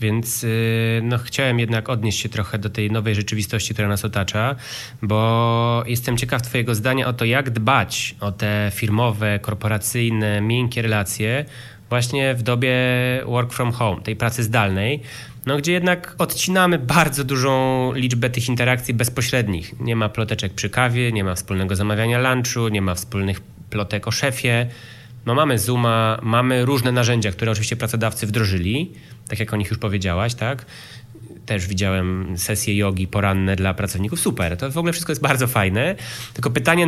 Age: 20-39